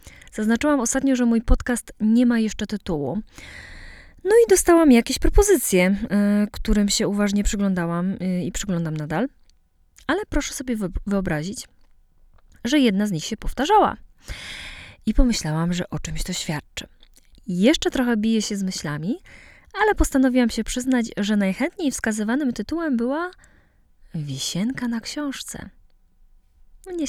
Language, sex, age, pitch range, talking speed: Polish, female, 20-39, 180-245 Hz, 125 wpm